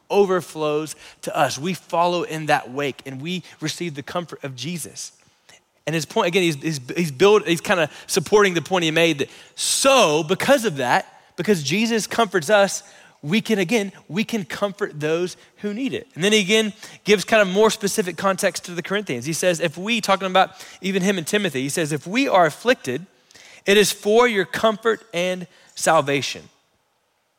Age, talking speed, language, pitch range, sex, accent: 20-39, 185 wpm, English, 150-200 Hz, male, American